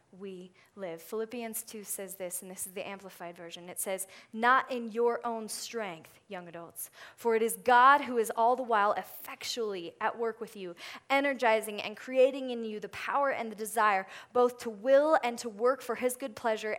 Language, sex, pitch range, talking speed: English, female, 205-245 Hz, 195 wpm